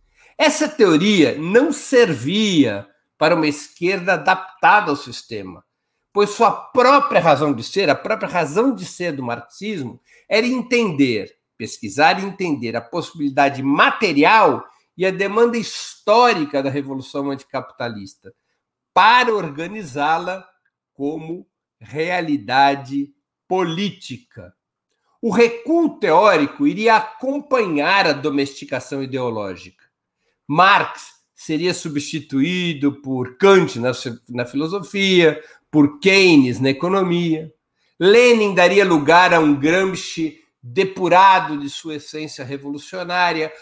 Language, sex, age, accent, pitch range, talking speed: Portuguese, male, 60-79, Brazilian, 140-195 Hz, 100 wpm